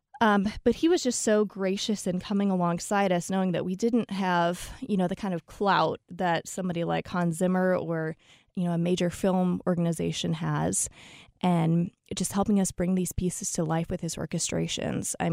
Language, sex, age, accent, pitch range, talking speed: English, female, 20-39, American, 175-205 Hz, 190 wpm